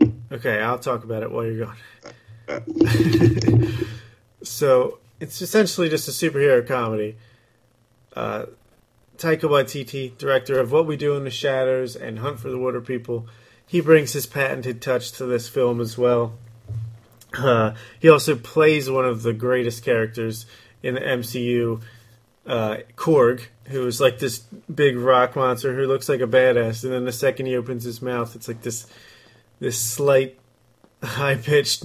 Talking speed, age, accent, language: 155 wpm, 30-49, American, English